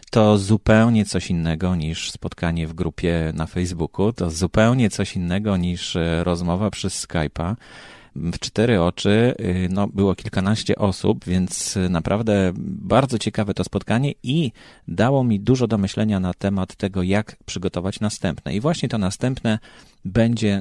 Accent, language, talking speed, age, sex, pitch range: native, Polish, 140 wpm, 40-59, male, 90-110 Hz